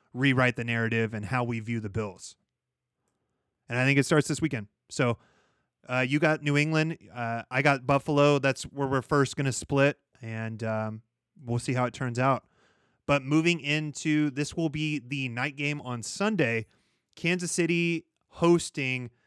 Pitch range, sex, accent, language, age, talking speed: 125-155 Hz, male, American, English, 30-49, 170 wpm